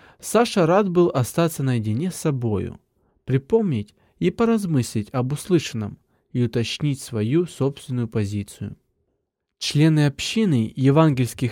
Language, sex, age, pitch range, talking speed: Russian, male, 20-39, 120-165 Hz, 105 wpm